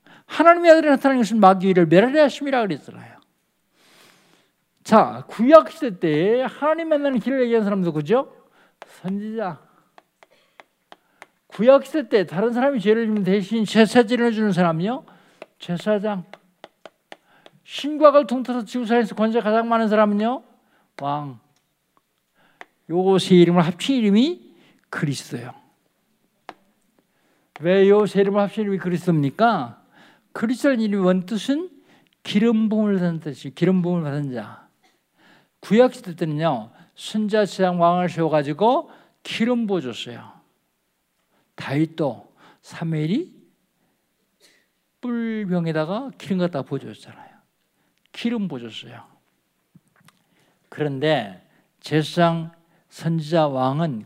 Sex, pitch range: male, 165-235 Hz